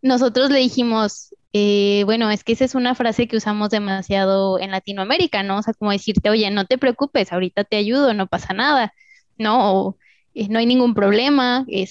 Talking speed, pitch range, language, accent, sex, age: 195 wpm, 210-265 Hz, Spanish, Mexican, female, 20-39